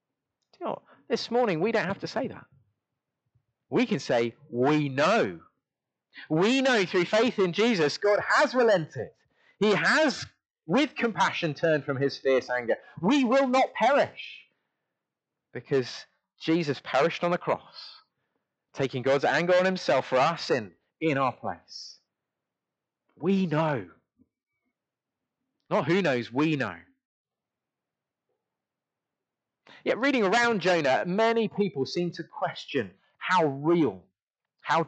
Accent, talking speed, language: British, 125 wpm, English